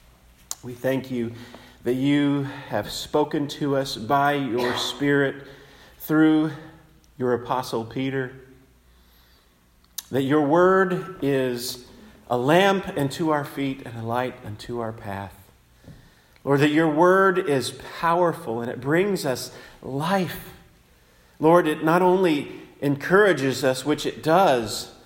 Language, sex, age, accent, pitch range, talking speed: English, male, 40-59, American, 105-155 Hz, 120 wpm